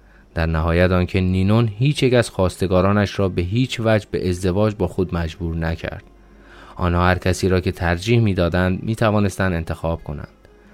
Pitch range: 85-105 Hz